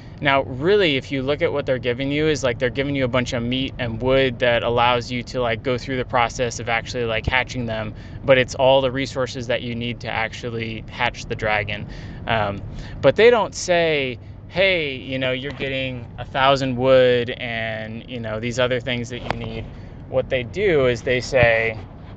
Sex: male